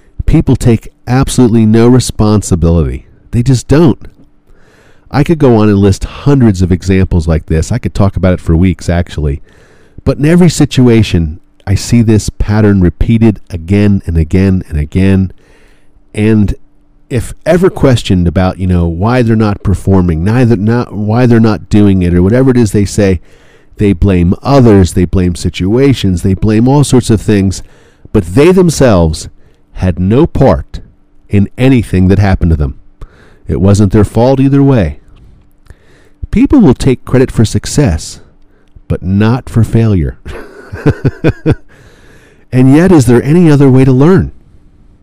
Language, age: English, 40-59